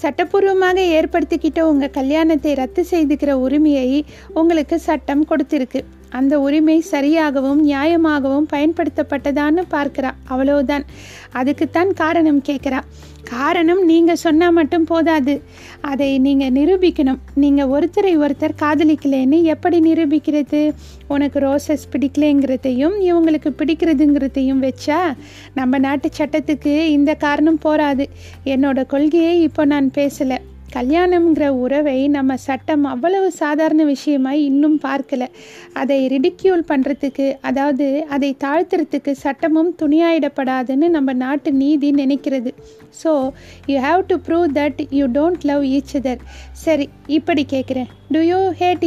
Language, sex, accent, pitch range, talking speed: Tamil, female, native, 275-320 Hz, 110 wpm